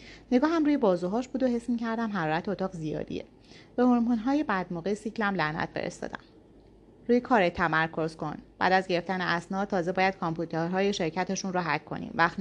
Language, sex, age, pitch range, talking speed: Persian, female, 30-49, 170-235 Hz, 165 wpm